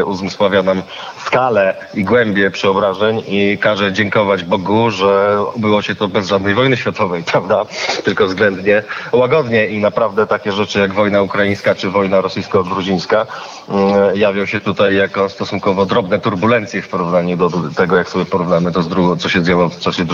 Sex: male